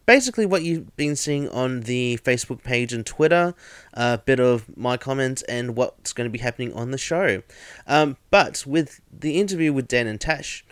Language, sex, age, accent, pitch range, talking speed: English, male, 20-39, Australian, 115-150 Hz, 195 wpm